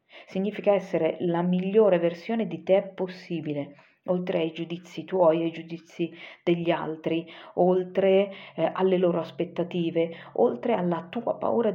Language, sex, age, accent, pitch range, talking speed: Italian, female, 40-59, native, 160-190 Hz, 135 wpm